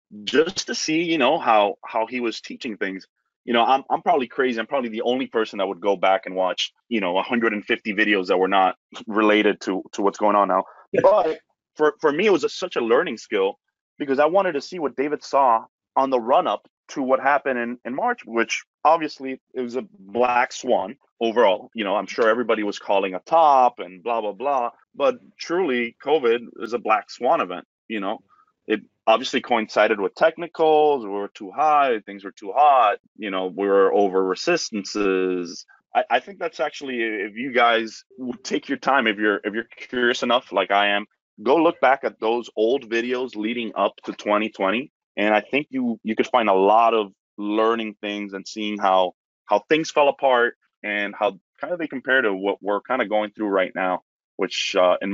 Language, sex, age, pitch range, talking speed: English, male, 30-49, 100-135 Hz, 205 wpm